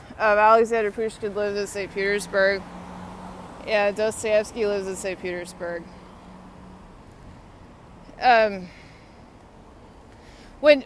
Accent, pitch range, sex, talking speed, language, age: American, 205-255 Hz, female, 85 wpm, English, 20-39